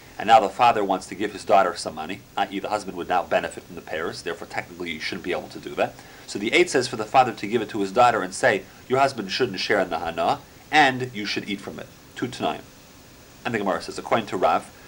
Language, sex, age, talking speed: English, male, 40-59, 270 wpm